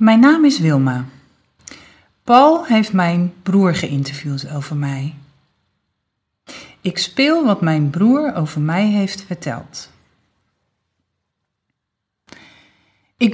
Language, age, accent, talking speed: Dutch, 40-59, Dutch, 95 wpm